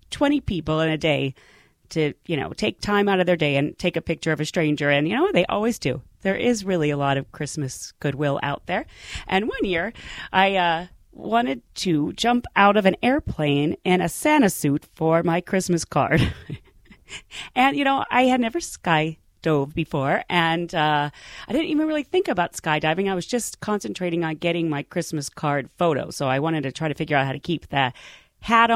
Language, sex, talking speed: English, female, 205 wpm